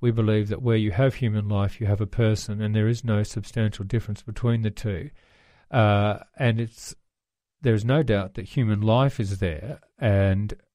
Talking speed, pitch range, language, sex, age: 190 wpm, 105-120 Hz, English, male, 40-59